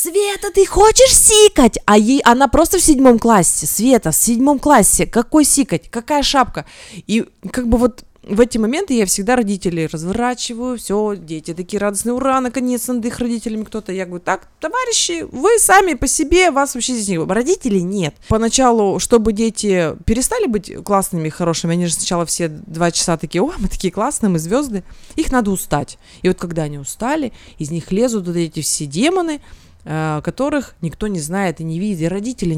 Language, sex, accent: Russian, female, native